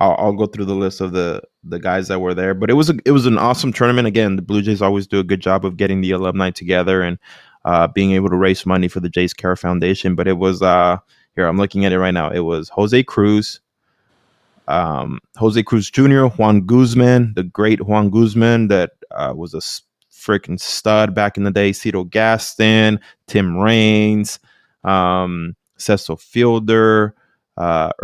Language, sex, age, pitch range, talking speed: English, male, 20-39, 95-110 Hz, 190 wpm